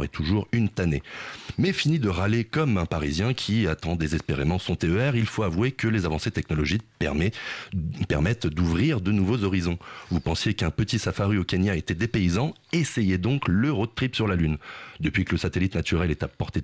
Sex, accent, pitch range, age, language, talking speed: male, French, 85-110 Hz, 30-49, French, 195 wpm